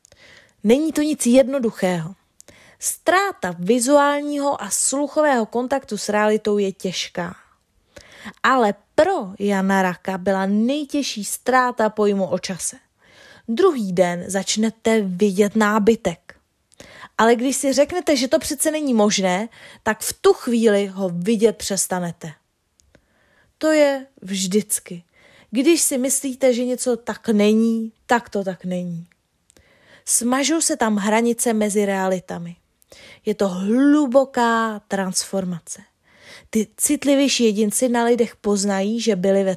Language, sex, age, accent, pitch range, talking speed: Czech, female, 20-39, native, 195-255 Hz, 115 wpm